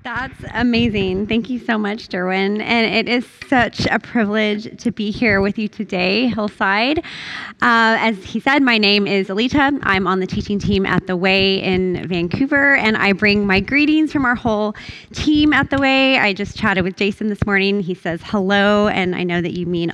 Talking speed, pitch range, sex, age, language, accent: 200 wpm, 180-225 Hz, female, 20-39, English, American